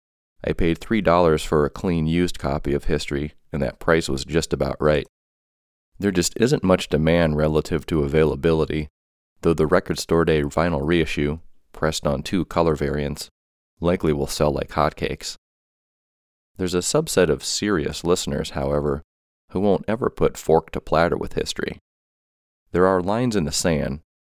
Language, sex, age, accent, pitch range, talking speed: English, male, 30-49, American, 70-85 Hz, 160 wpm